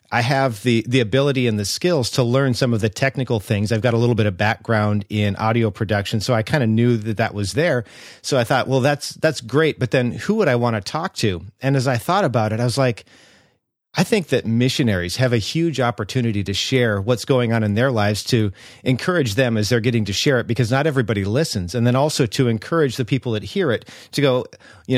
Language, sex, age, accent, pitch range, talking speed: English, male, 40-59, American, 115-135 Hz, 245 wpm